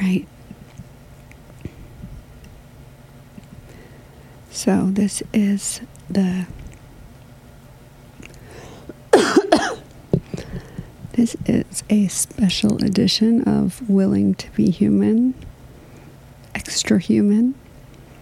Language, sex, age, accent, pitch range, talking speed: English, female, 50-69, American, 125-195 Hz, 55 wpm